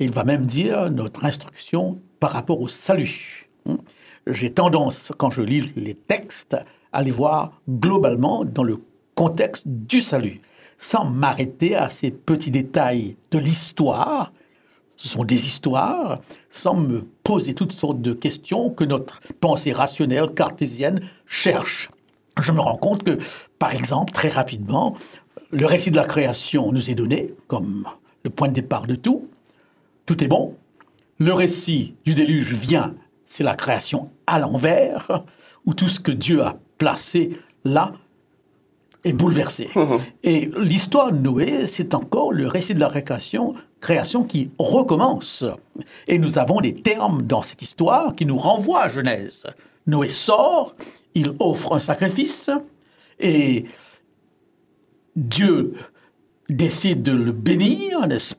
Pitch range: 135-180 Hz